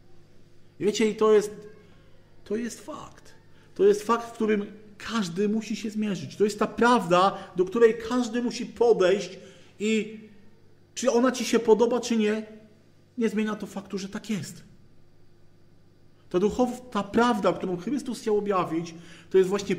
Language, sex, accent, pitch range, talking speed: Polish, male, native, 140-215 Hz, 155 wpm